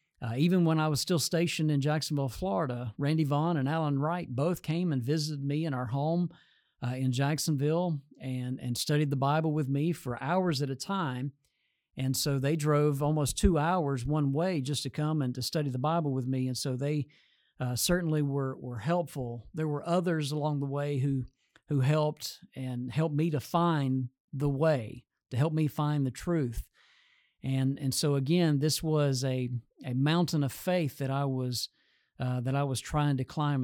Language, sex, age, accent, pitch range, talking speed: English, male, 50-69, American, 135-160 Hz, 195 wpm